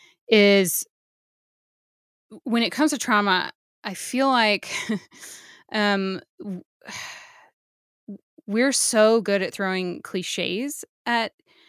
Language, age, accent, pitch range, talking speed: English, 10-29, American, 195-240 Hz, 85 wpm